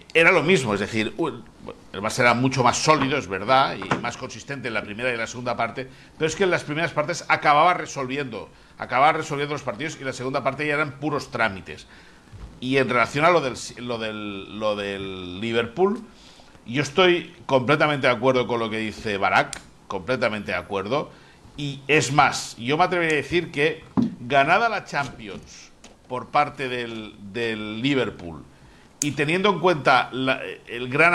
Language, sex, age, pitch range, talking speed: Spanish, male, 60-79, 120-150 Hz, 185 wpm